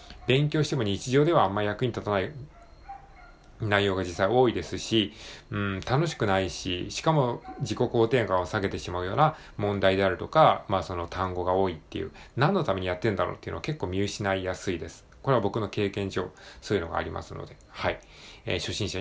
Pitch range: 95-140 Hz